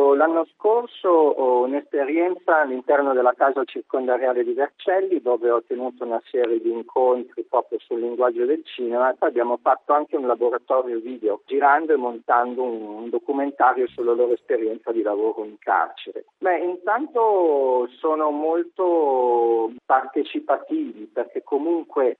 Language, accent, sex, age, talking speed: Italian, native, male, 50-69, 130 wpm